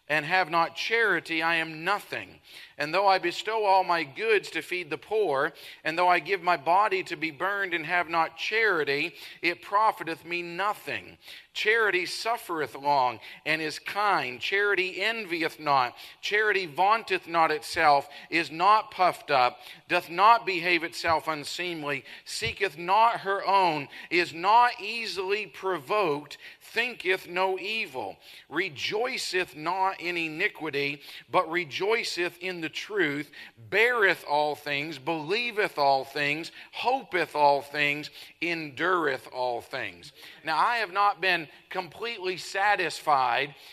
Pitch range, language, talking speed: 160-200 Hz, English, 130 wpm